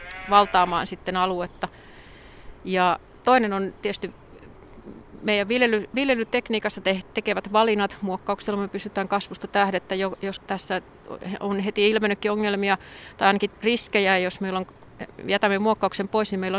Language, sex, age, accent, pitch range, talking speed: Finnish, female, 30-49, native, 185-210 Hz, 125 wpm